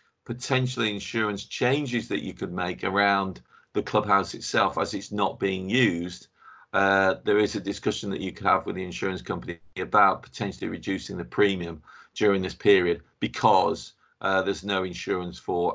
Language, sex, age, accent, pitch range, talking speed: English, male, 40-59, British, 90-110 Hz, 165 wpm